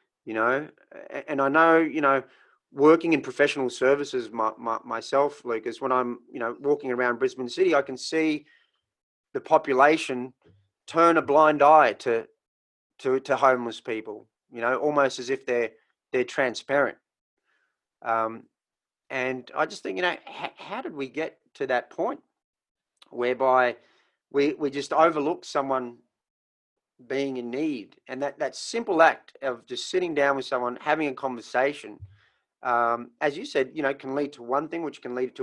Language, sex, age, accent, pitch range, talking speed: English, male, 30-49, Australian, 125-150 Hz, 160 wpm